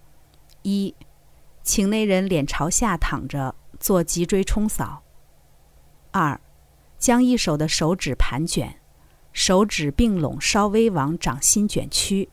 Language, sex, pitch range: Chinese, female, 150-200 Hz